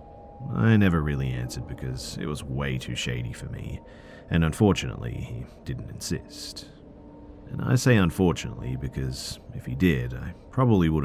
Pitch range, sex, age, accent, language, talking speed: 65-100 Hz, male, 40-59, Australian, English, 150 wpm